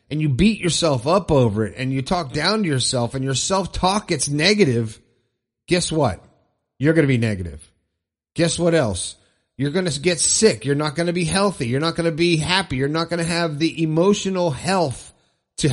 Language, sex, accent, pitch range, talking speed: English, male, American, 125-185 Hz, 205 wpm